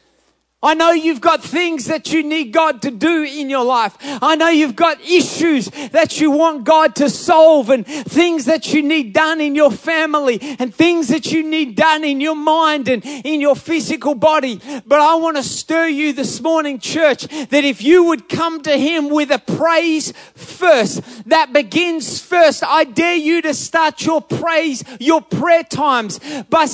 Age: 30-49